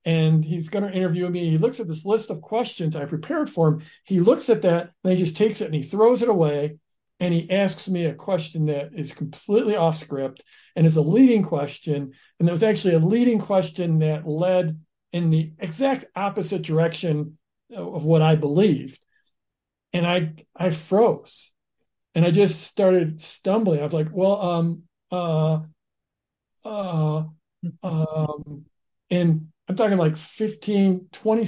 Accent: American